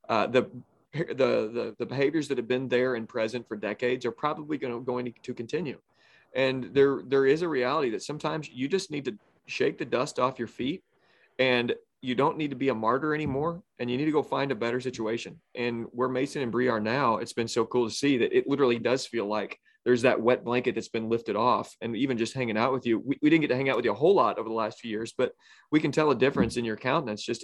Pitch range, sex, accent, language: 115-135 Hz, male, American, English